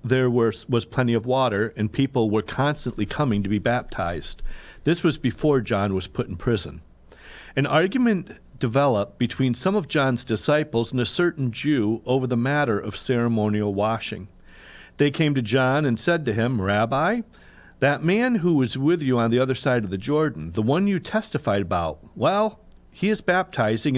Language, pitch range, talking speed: English, 105-150 Hz, 180 wpm